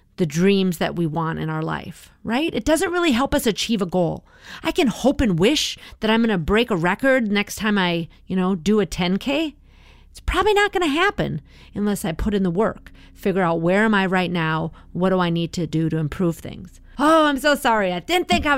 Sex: female